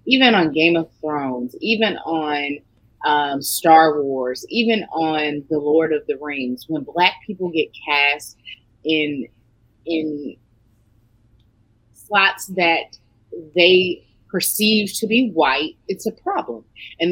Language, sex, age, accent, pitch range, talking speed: English, female, 30-49, American, 125-190 Hz, 125 wpm